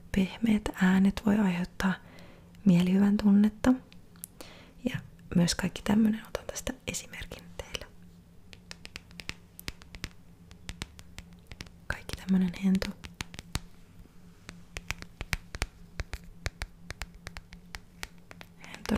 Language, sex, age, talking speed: Finnish, female, 30-49, 55 wpm